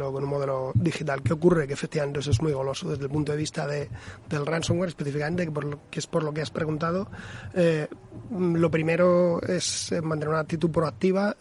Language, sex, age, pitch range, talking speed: Spanish, male, 30-49, 140-165 Hz, 190 wpm